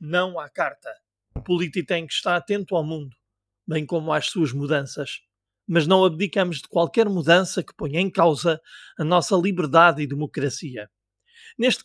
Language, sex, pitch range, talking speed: Portuguese, male, 155-195 Hz, 160 wpm